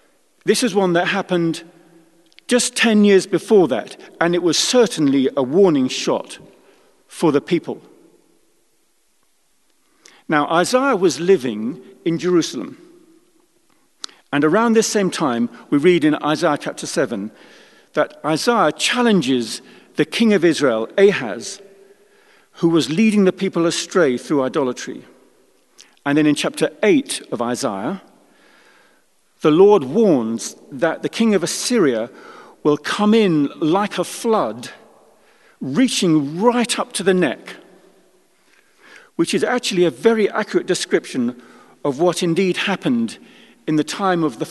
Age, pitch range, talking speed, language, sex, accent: 50-69, 160-240 Hz, 130 wpm, English, male, British